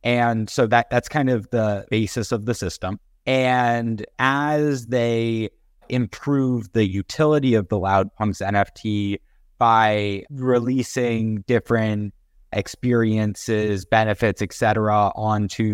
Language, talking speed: English, 115 wpm